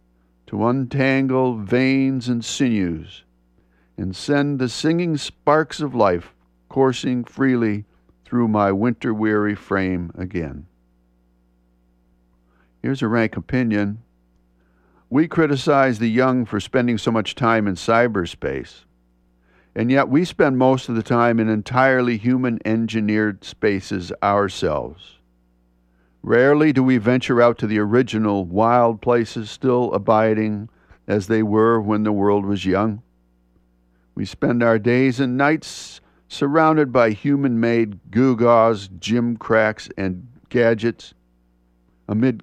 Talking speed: 115 wpm